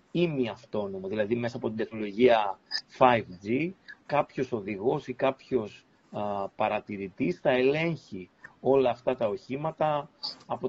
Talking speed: 120 wpm